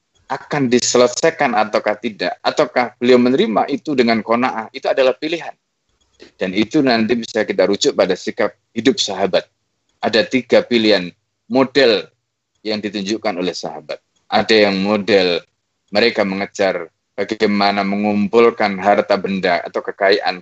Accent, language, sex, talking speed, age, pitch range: native, Indonesian, male, 125 wpm, 20-39, 100-135 Hz